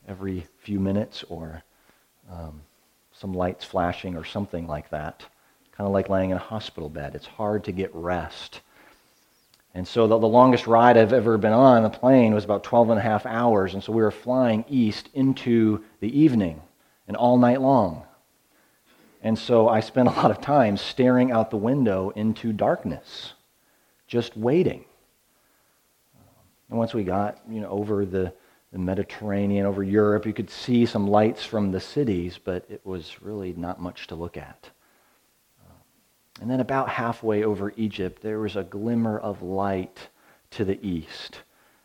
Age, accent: 40-59, American